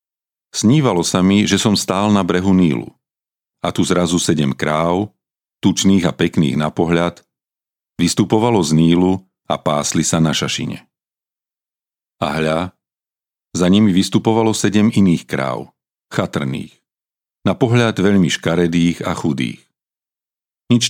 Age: 50-69